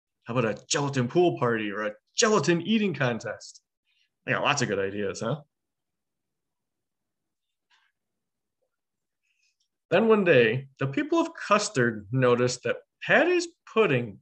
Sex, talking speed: male, 120 wpm